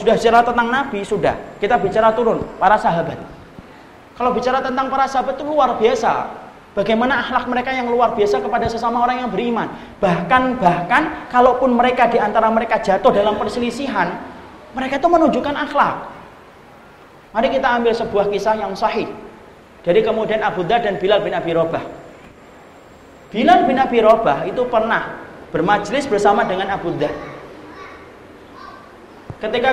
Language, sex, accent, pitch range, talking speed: Indonesian, male, native, 200-250 Hz, 140 wpm